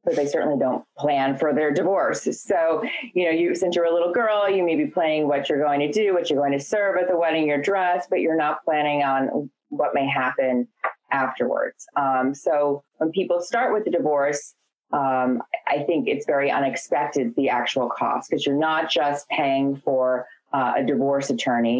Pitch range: 130-160 Hz